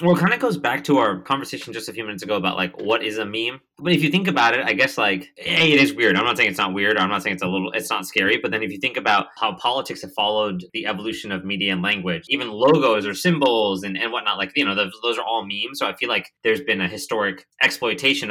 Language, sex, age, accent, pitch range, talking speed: English, male, 20-39, American, 90-115 Hz, 290 wpm